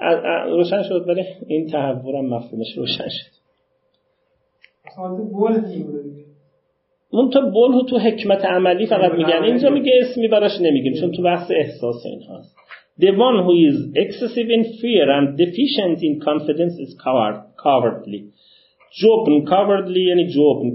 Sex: male